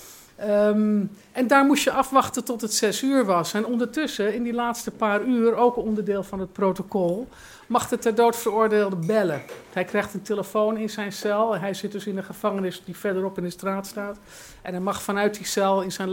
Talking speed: 205 wpm